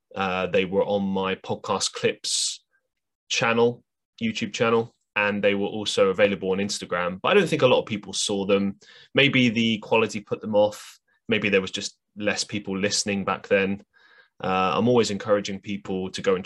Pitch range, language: 95-115 Hz, English